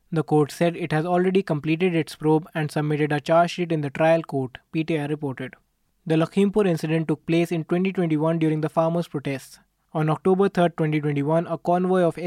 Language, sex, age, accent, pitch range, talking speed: English, male, 20-39, Indian, 150-170 Hz, 170 wpm